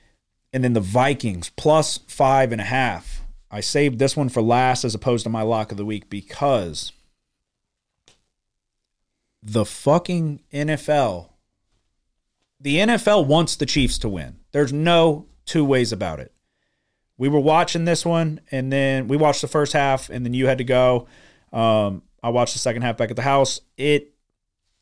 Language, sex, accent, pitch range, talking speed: English, male, American, 110-150 Hz, 165 wpm